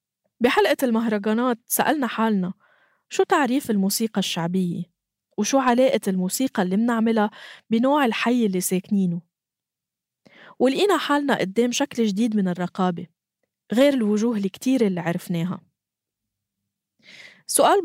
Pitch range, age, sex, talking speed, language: 185-240 Hz, 20-39, female, 105 wpm, Arabic